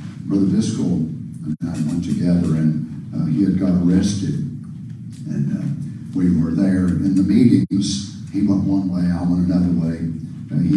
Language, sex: English, male